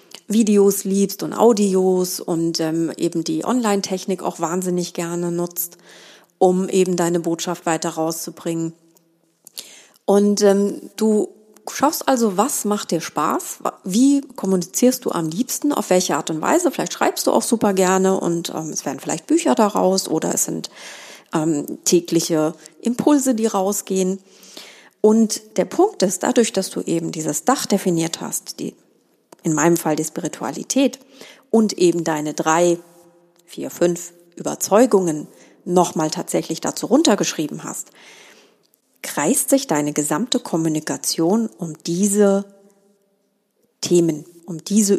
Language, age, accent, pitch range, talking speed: German, 30-49, German, 165-210 Hz, 130 wpm